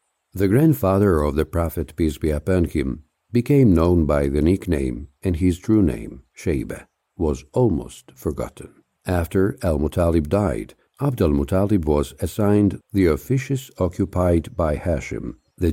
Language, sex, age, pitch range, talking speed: English, male, 60-79, 80-100 Hz, 130 wpm